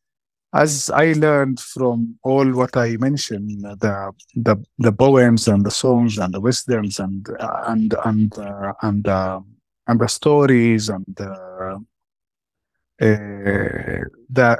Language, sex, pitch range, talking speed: English, male, 110-140 Hz, 130 wpm